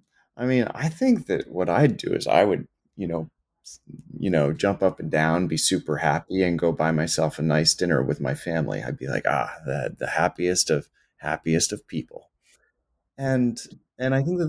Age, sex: 30-49, male